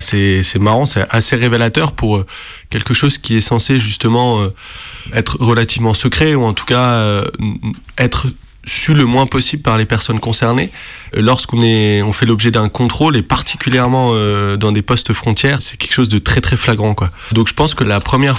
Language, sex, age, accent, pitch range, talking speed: French, male, 20-39, French, 105-130 Hz, 185 wpm